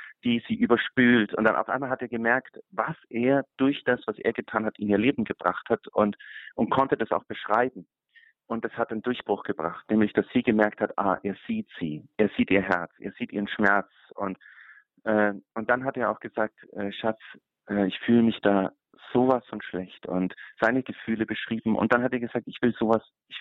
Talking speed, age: 215 wpm, 40-59